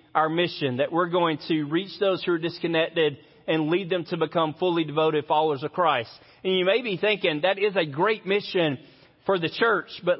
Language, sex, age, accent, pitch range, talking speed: English, male, 30-49, American, 170-235 Hz, 205 wpm